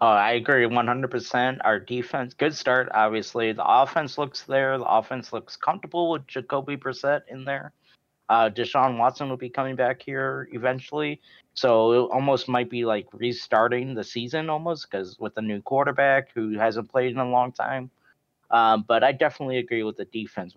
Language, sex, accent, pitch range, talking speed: English, male, American, 115-140 Hz, 180 wpm